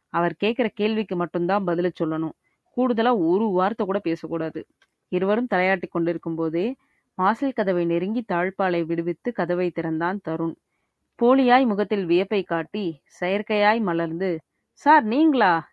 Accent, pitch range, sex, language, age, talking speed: native, 170-225 Hz, female, Tamil, 30-49, 120 wpm